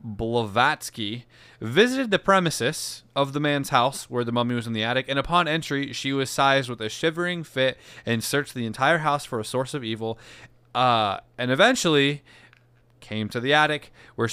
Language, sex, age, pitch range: English, male, 20-39, 120-150 Hz